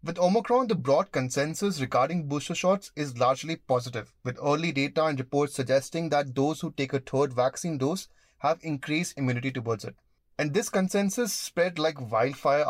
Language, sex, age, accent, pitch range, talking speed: English, male, 30-49, Indian, 130-165 Hz, 170 wpm